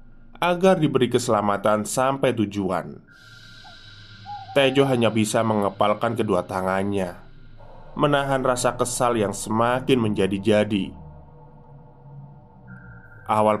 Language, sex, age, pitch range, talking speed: Indonesian, male, 20-39, 105-130 Hz, 80 wpm